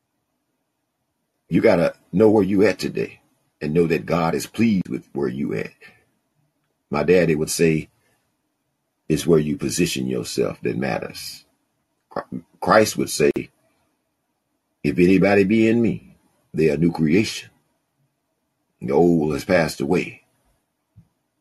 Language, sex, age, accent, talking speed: English, male, 50-69, American, 130 wpm